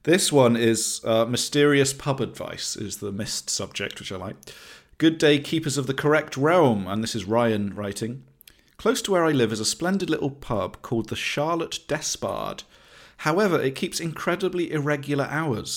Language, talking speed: English, 175 wpm